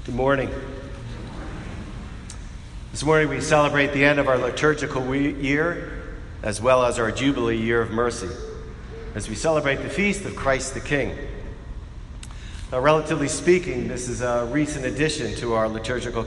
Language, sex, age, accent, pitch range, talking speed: English, male, 50-69, American, 110-140 Hz, 150 wpm